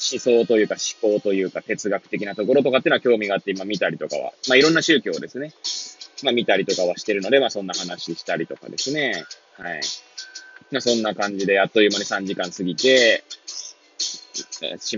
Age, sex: 20-39, male